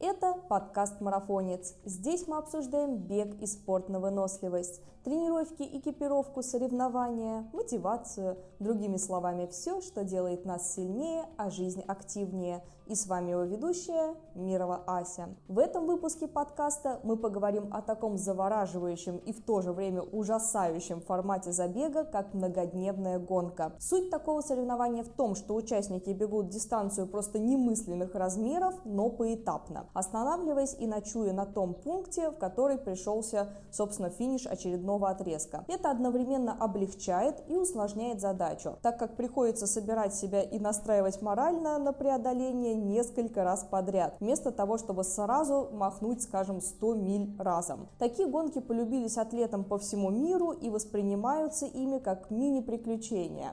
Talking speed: 135 wpm